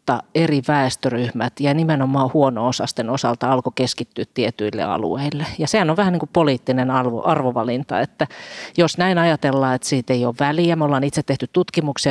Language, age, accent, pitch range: Finnish, 40-59, native, 125-155 Hz